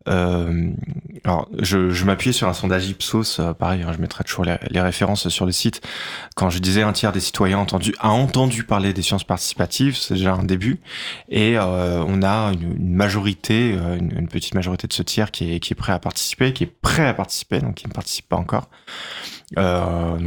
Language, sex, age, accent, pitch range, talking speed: French, male, 20-39, French, 90-120 Hz, 215 wpm